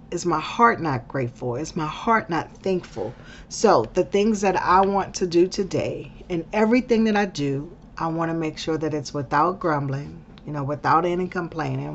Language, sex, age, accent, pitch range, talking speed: English, female, 40-59, American, 145-185 Hz, 190 wpm